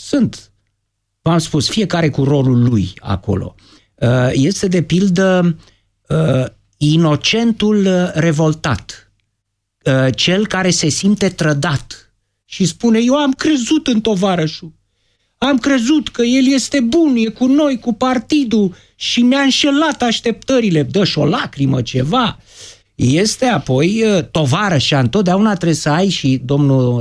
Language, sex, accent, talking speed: Romanian, male, native, 120 wpm